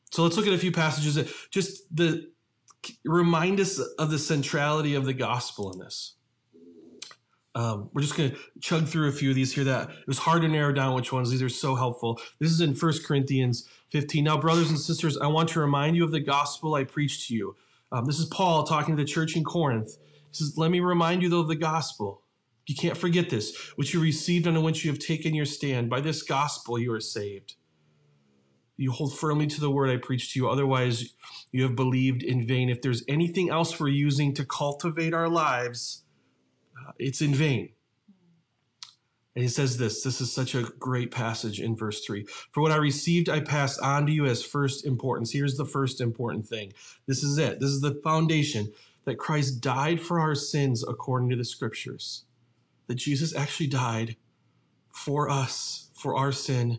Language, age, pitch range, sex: English, 30-49, 125-155 Hz, male